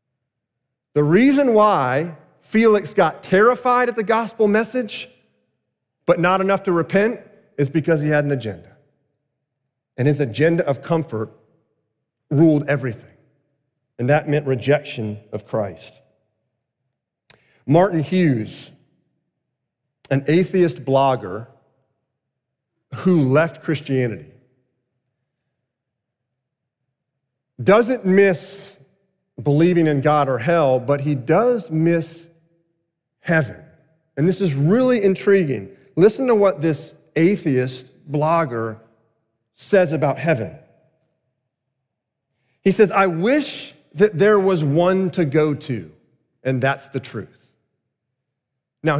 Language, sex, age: English, male, 40-59